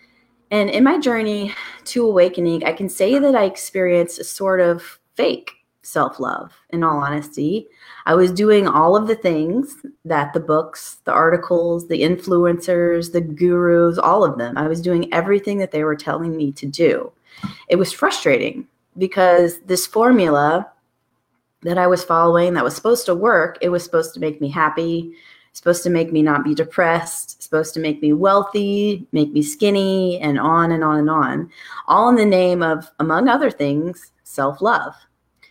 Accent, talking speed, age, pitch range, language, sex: American, 170 wpm, 20-39, 155-200 Hz, English, female